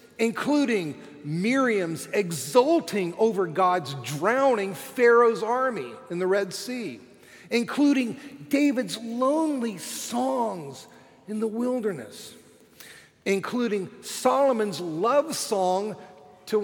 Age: 50-69